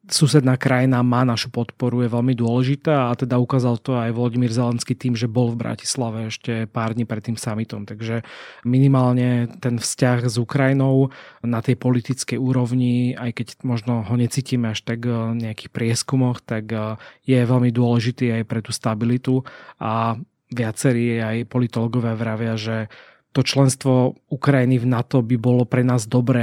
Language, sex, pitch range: Slovak, male, 115-130 Hz